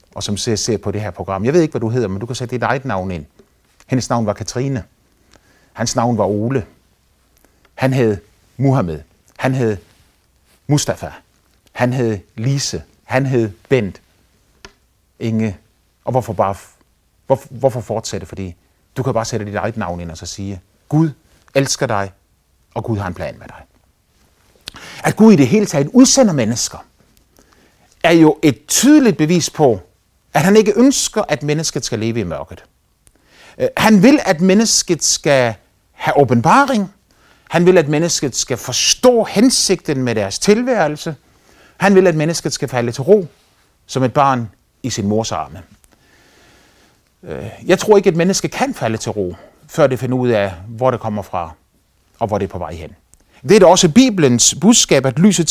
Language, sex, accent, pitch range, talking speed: Danish, male, native, 105-165 Hz, 175 wpm